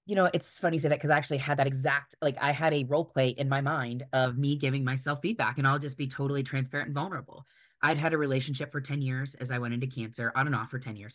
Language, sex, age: English, female, 20-39